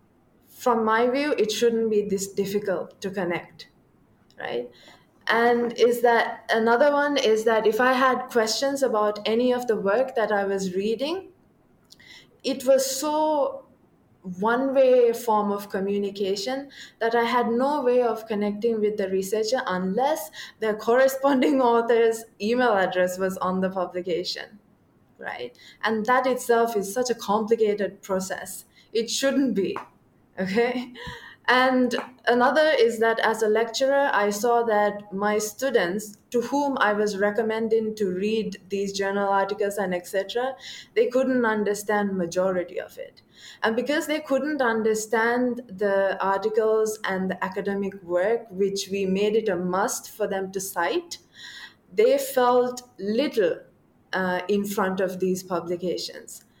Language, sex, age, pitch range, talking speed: English, female, 20-39, 195-250 Hz, 140 wpm